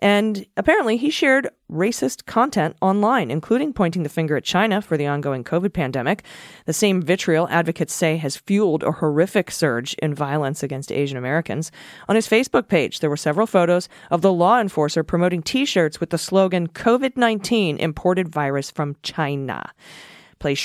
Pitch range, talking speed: 150-190 Hz, 165 wpm